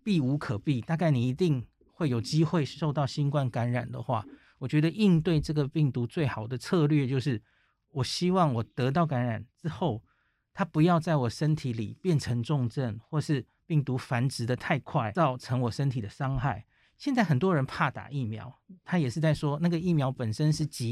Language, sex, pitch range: Chinese, male, 125-155 Hz